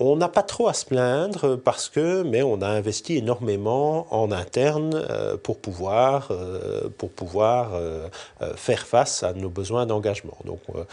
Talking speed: 150 wpm